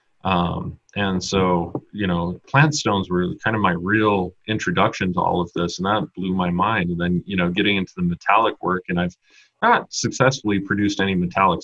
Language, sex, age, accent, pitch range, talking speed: English, male, 30-49, American, 90-100 Hz, 195 wpm